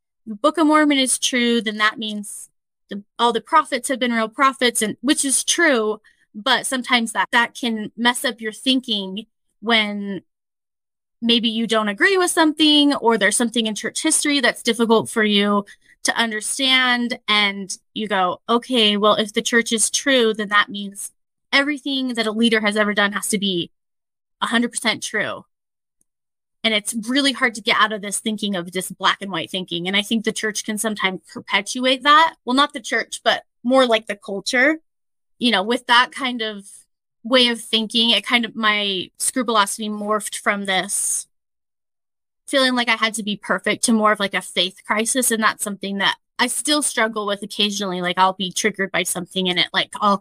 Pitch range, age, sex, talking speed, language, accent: 200-245 Hz, 20-39, female, 190 wpm, English, American